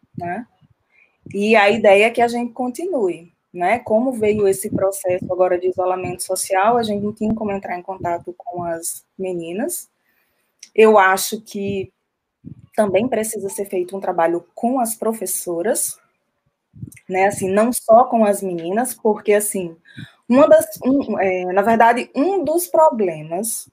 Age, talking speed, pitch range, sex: 20-39, 145 wpm, 190-240 Hz, female